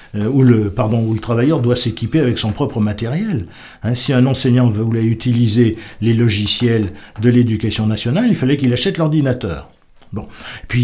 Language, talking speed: French, 165 wpm